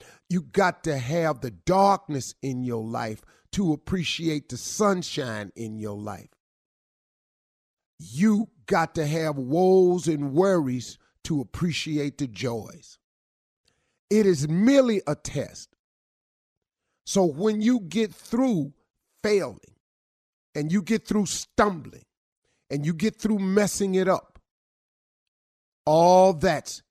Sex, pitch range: male, 135-185 Hz